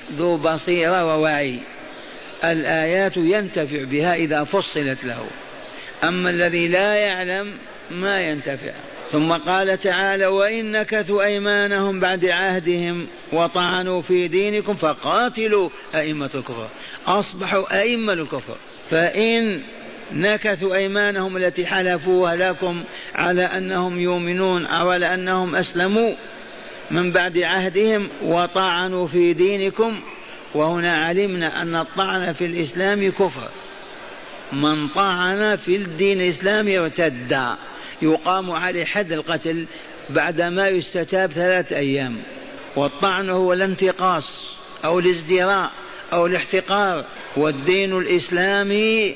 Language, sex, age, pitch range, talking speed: Arabic, male, 50-69, 170-195 Hz, 100 wpm